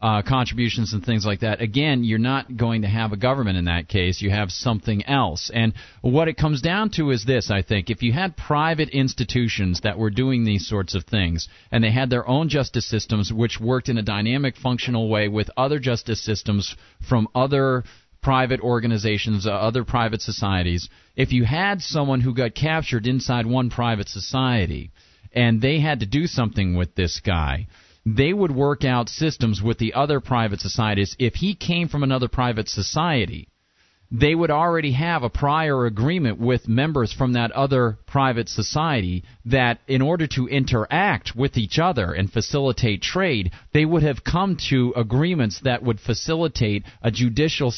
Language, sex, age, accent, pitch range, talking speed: English, male, 40-59, American, 105-135 Hz, 180 wpm